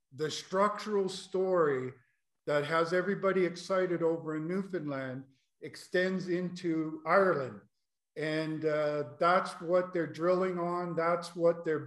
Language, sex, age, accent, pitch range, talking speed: English, male, 50-69, American, 155-180 Hz, 115 wpm